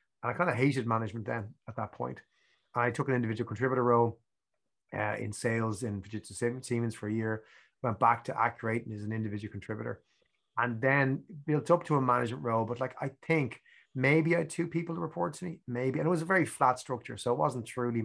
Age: 30-49